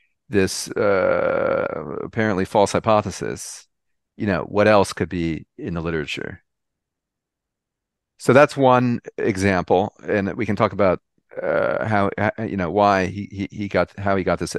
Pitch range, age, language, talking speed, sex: 95-115 Hz, 40-59, English, 150 wpm, male